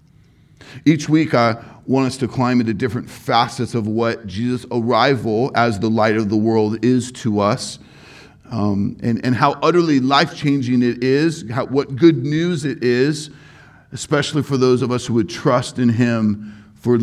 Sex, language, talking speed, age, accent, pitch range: male, English, 165 wpm, 40-59, American, 115-140 Hz